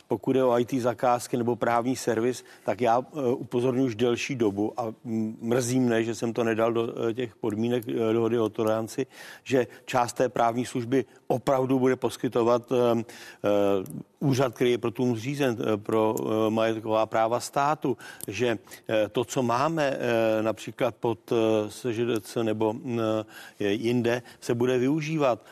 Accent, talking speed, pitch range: native, 130 wpm, 110-130 Hz